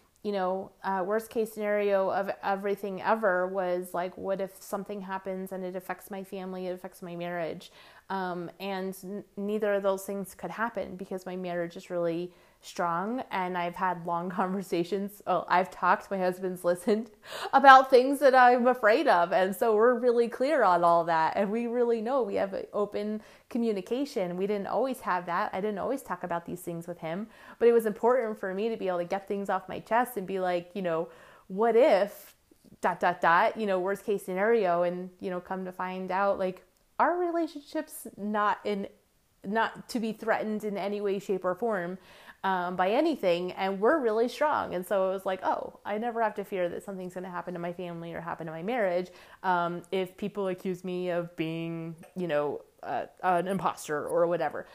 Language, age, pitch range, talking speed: English, 20-39, 180-210 Hz, 200 wpm